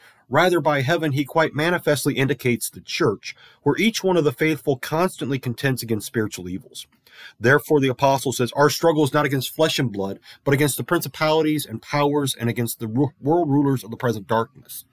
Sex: male